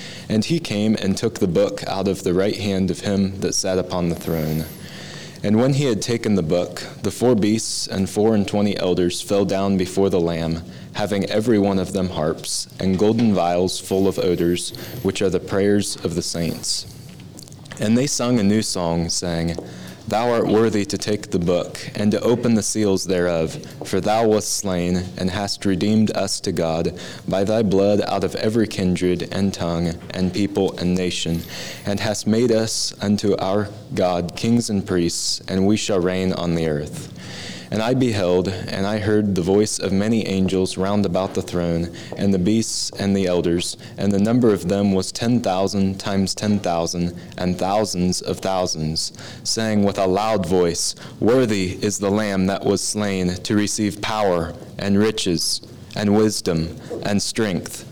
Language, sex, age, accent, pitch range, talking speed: English, male, 20-39, American, 90-105 Hz, 180 wpm